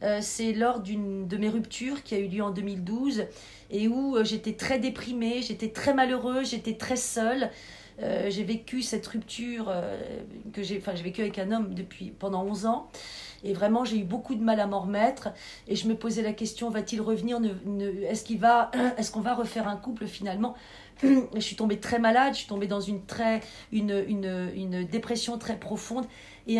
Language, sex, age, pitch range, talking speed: French, female, 40-59, 205-235 Hz, 205 wpm